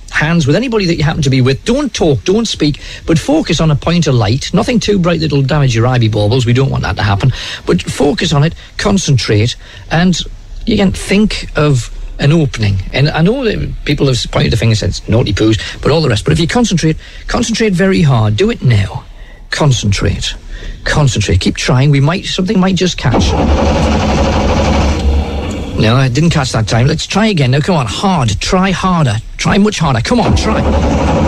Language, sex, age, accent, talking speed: English, male, 50-69, British, 200 wpm